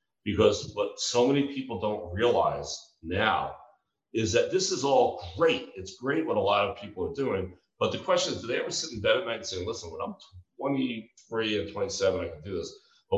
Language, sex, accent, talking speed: English, male, American, 220 wpm